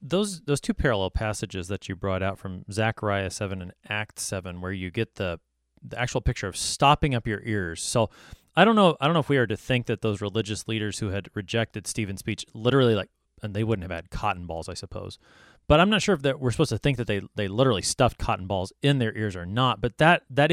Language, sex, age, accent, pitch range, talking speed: English, male, 30-49, American, 100-145 Hz, 245 wpm